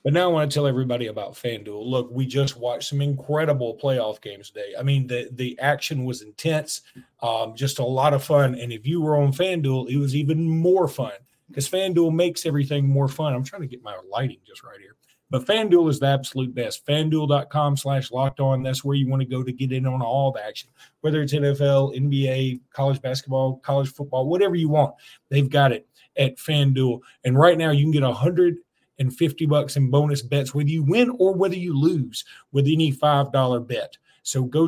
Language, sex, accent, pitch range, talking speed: English, male, American, 135-160 Hz, 210 wpm